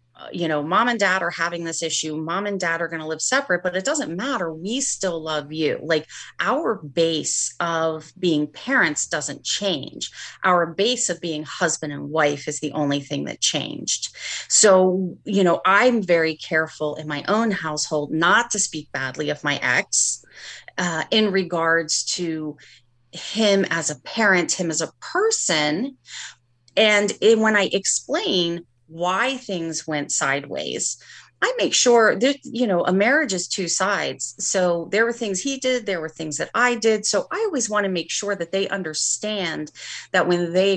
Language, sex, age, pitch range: English, female, 30-49, 155-200 Hz